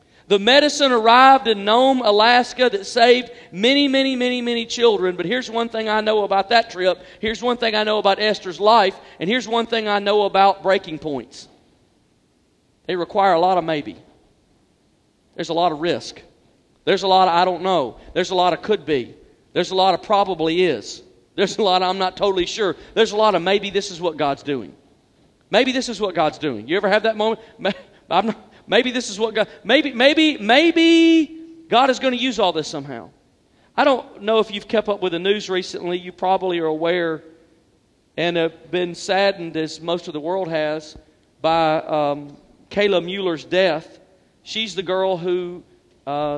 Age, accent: 40-59, American